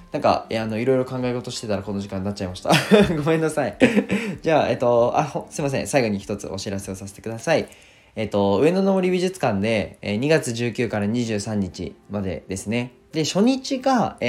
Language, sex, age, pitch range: Japanese, male, 20-39, 95-130 Hz